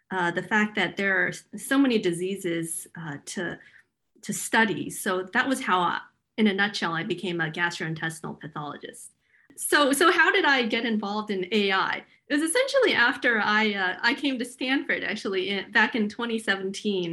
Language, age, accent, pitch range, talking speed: English, 40-59, American, 180-220 Hz, 175 wpm